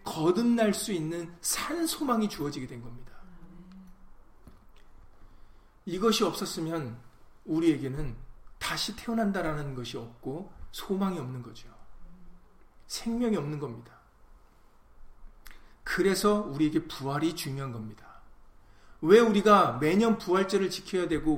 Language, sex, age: Korean, male, 40-59